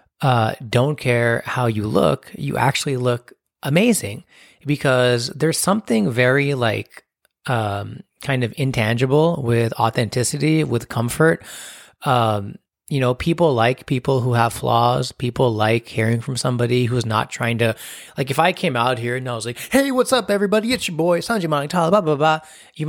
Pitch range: 115-145 Hz